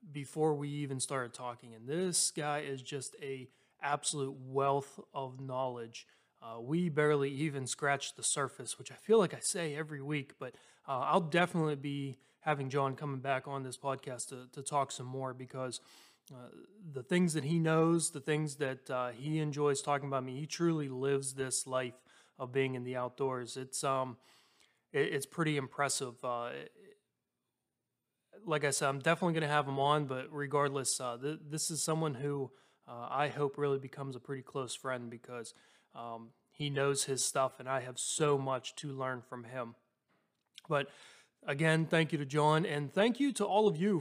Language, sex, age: English, male, 20-39